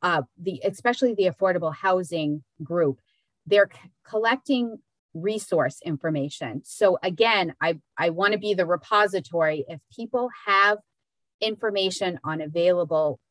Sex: female